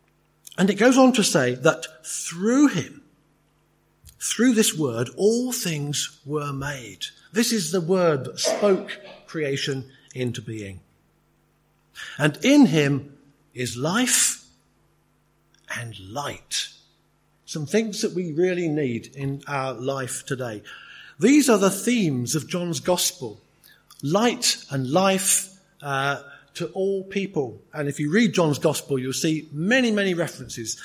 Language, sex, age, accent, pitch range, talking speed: English, male, 50-69, British, 135-185 Hz, 130 wpm